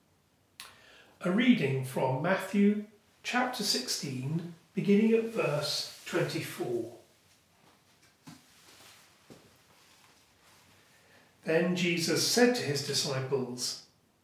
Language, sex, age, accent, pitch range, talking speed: English, male, 40-59, British, 155-210 Hz, 65 wpm